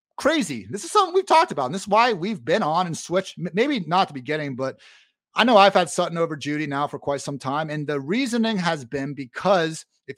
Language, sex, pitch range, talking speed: English, male, 140-205 Hz, 240 wpm